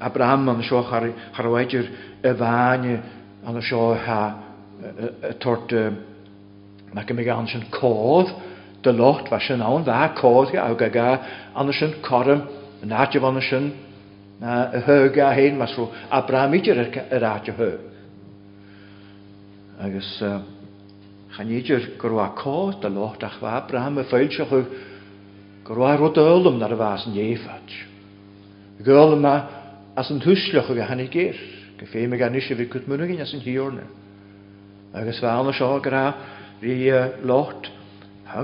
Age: 60-79